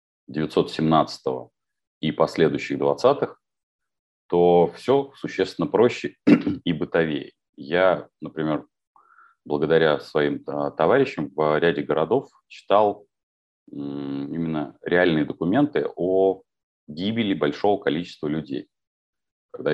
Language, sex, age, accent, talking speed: Russian, male, 30-49, native, 85 wpm